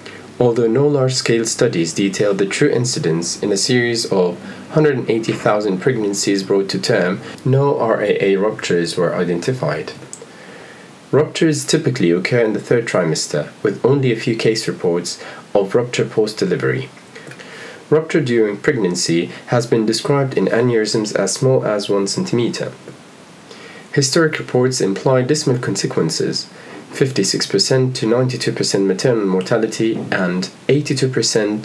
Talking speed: 120 wpm